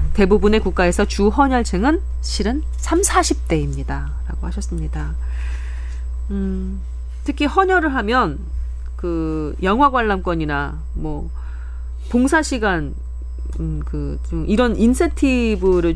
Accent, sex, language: native, female, Korean